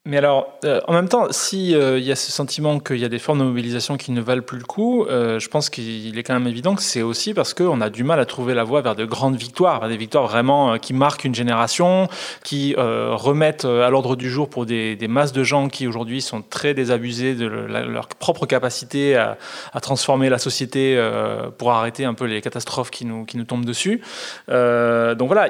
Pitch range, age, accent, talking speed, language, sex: 130-170 Hz, 20-39, French, 240 wpm, French, male